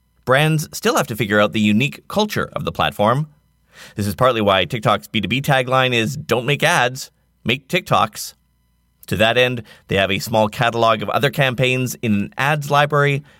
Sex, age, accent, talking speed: male, 30-49, American, 180 wpm